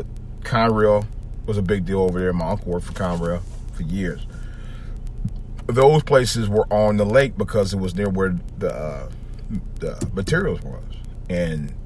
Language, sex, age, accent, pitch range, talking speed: English, male, 40-59, American, 90-110 Hz, 155 wpm